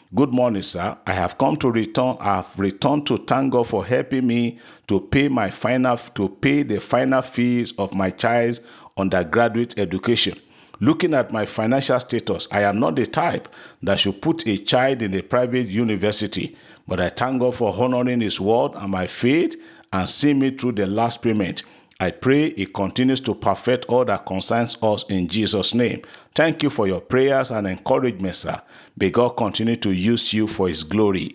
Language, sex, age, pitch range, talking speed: English, male, 50-69, 100-130 Hz, 185 wpm